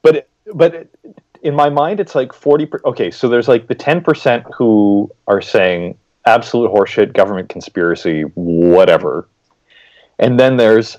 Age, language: 30-49, English